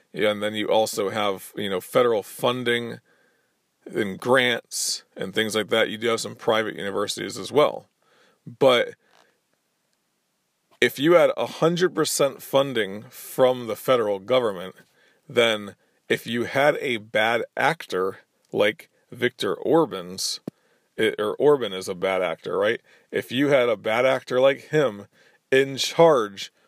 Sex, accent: male, American